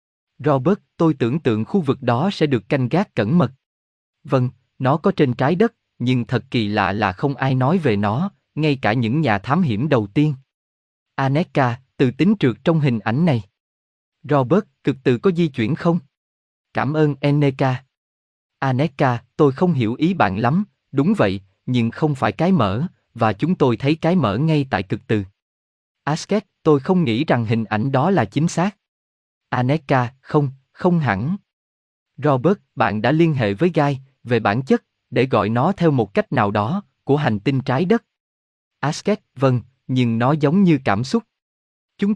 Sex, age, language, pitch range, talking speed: male, 20-39, Vietnamese, 115-160 Hz, 180 wpm